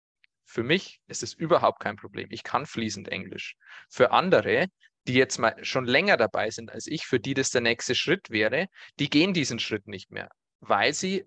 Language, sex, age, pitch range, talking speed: German, male, 20-39, 115-150 Hz, 195 wpm